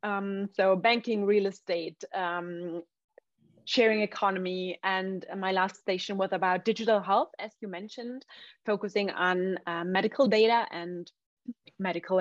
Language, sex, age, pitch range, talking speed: English, female, 30-49, 195-235 Hz, 130 wpm